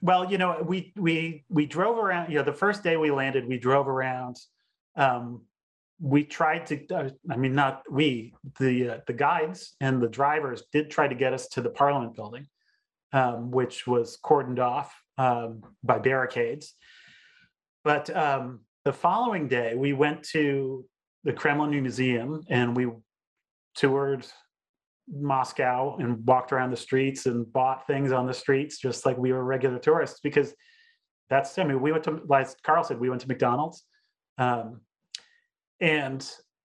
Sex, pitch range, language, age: male, 125-155 Hz, English, 30-49